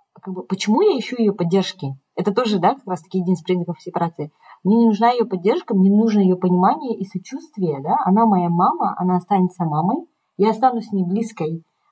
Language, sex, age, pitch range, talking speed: Russian, female, 30-49, 185-220 Hz, 195 wpm